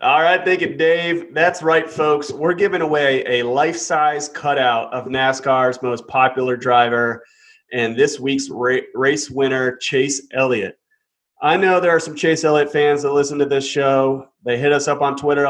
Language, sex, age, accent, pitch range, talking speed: English, male, 30-49, American, 130-160 Hz, 175 wpm